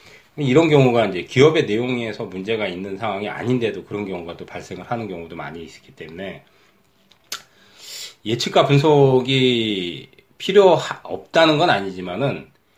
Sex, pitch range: male, 100-140 Hz